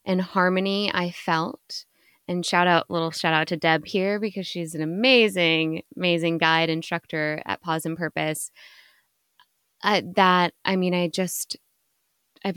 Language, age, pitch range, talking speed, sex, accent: English, 10-29, 170-200 Hz, 150 wpm, female, American